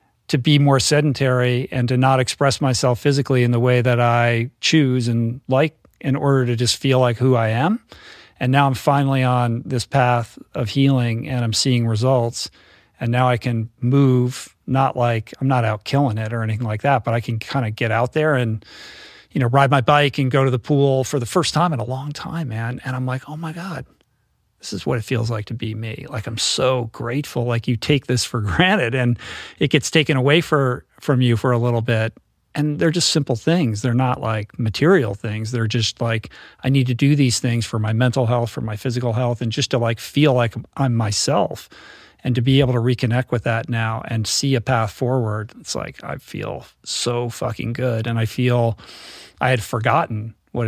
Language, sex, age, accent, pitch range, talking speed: English, male, 40-59, American, 115-135 Hz, 220 wpm